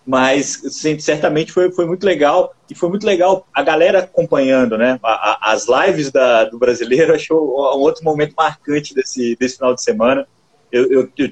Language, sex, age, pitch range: Portuguese, male, 30-49, 125-180 Hz